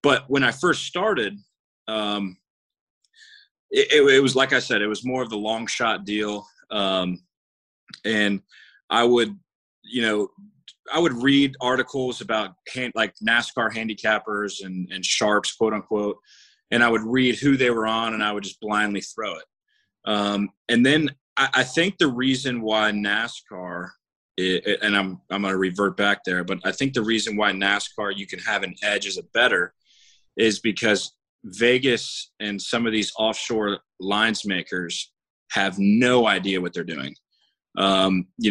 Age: 20-39